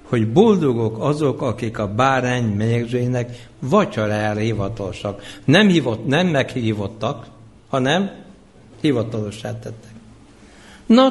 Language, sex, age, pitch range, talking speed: Hungarian, male, 60-79, 115-165 Hz, 90 wpm